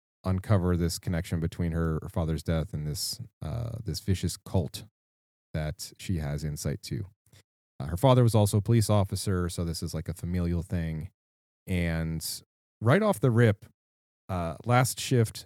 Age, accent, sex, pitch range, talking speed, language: 30-49, American, male, 85-110 Hz, 165 wpm, English